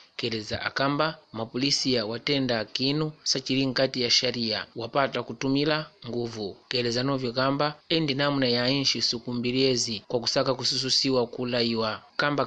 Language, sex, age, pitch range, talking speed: Portuguese, male, 30-49, 120-140 Hz, 125 wpm